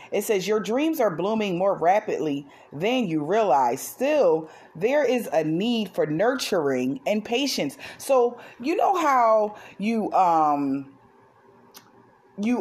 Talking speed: 130 wpm